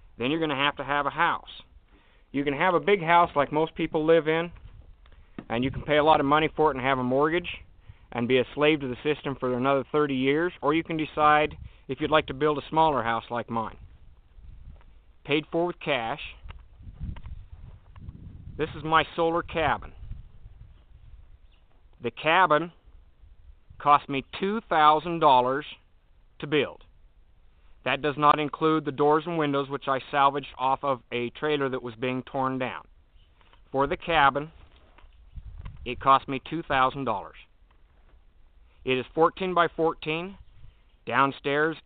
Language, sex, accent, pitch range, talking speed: English, male, American, 105-150 Hz, 155 wpm